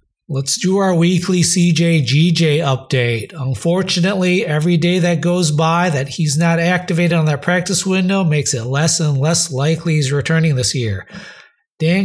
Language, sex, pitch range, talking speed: English, male, 140-180 Hz, 155 wpm